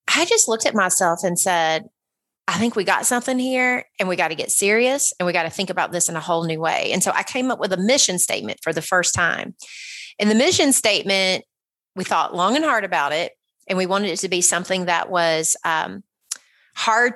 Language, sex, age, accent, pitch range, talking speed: English, female, 30-49, American, 175-220 Hz, 230 wpm